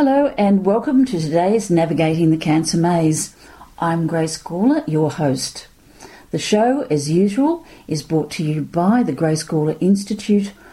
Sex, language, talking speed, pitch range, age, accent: female, English, 150 wpm, 155-200 Hz, 50-69, Australian